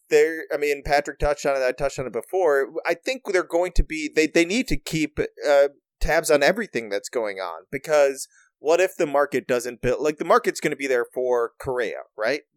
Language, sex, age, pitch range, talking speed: English, male, 30-49, 120-175 Hz, 235 wpm